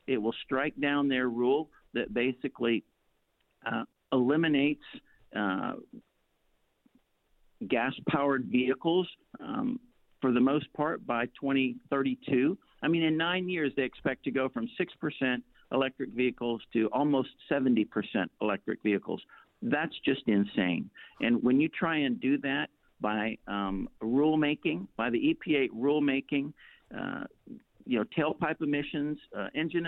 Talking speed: 125 wpm